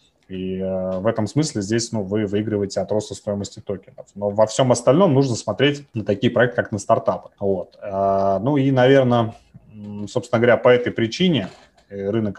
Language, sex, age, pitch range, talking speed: Russian, male, 20-39, 100-120 Hz, 165 wpm